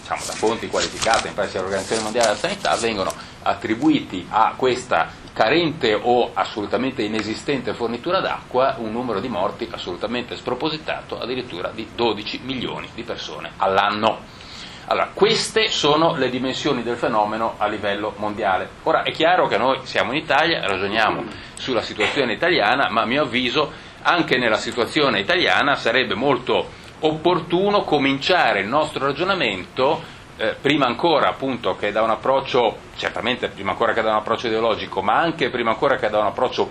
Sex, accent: male, native